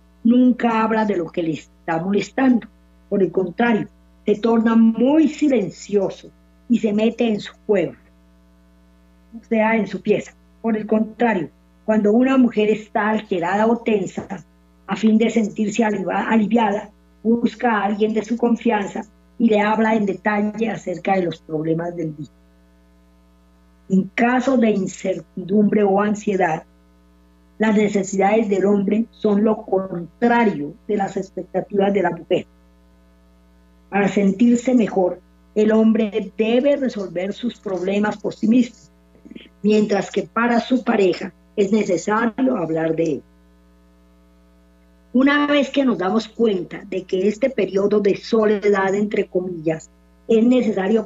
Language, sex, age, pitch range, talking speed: Spanish, female, 40-59, 160-220 Hz, 135 wpm